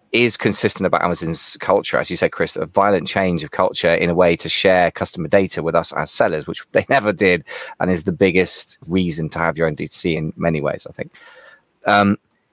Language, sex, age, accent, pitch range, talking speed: English, male, 20-39, British, 85-95 Hz, 215 wpm